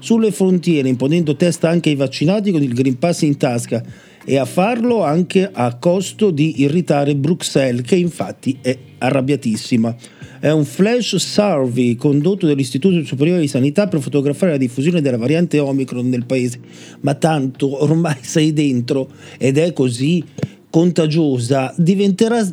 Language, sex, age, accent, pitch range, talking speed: Italian, male, 40-59, native, 145-195 Hz, 145 wpm